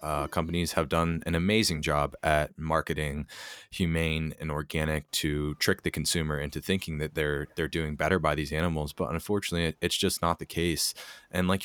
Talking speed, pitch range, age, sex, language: 180 wpm, 75-90 Hz, 20-39, male, English